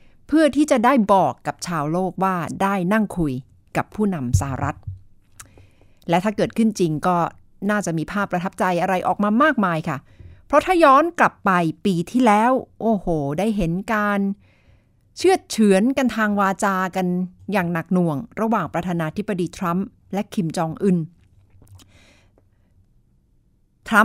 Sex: female